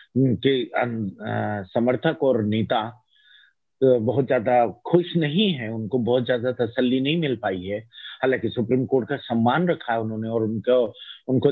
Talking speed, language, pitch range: 145 wpm, Hindi, 115-150 Hz